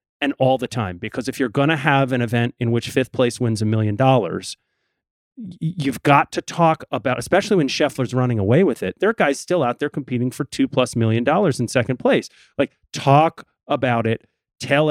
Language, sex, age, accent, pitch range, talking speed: English, male, 30-49, American, 125-170 Hz, 210 wpm